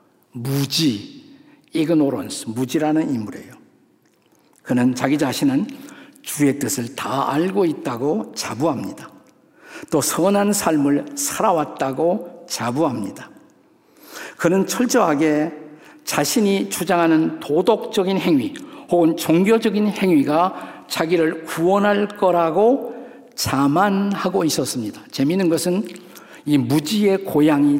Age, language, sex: 50-69, Korean, male